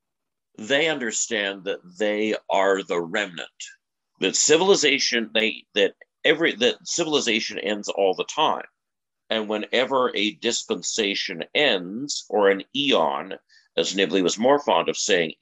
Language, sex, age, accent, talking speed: English, male, 50-69, American, 130 wpm